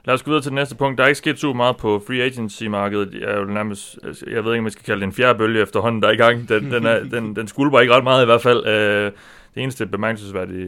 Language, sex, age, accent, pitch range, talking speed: Danish, male, 30-49, native, 100-115 Hz, 255 wpm